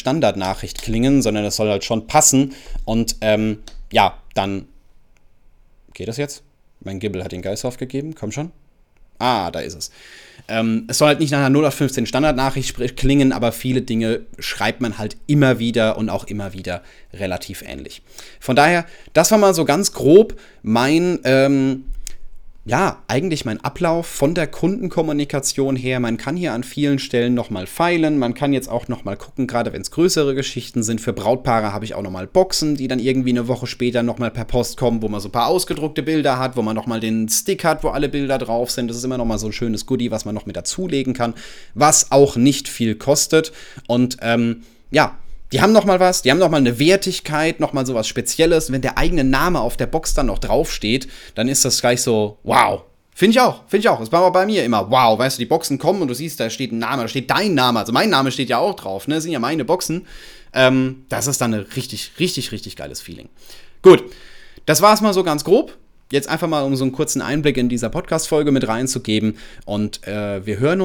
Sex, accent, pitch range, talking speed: male, German, 115-145 Hz, 215 wpm